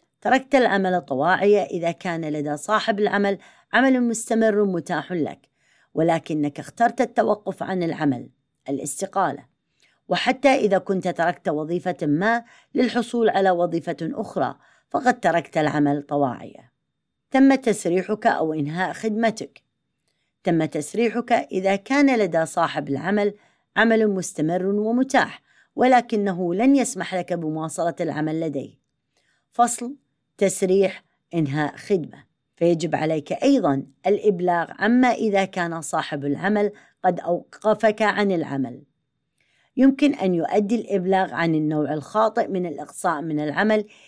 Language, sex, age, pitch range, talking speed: Arabic, female, 30-49, 160-215 Hz, 110 wpm